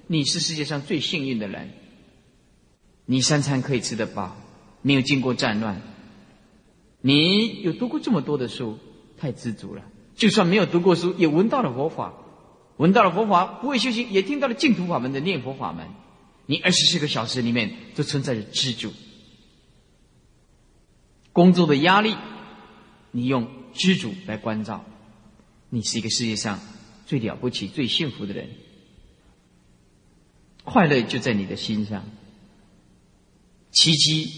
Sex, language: male, Chinese